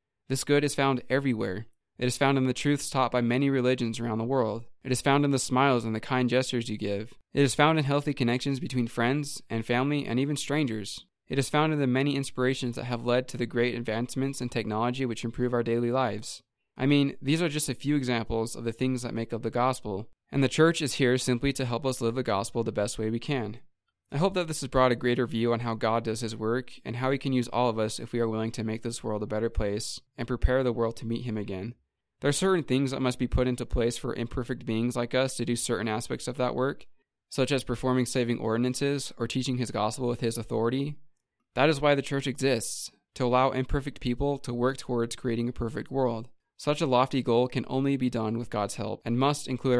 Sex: male